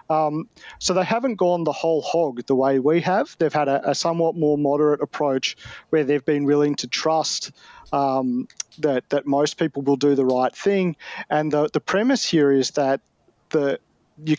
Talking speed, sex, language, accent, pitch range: 190 wpm, male, English, Australian, 135-165 Hz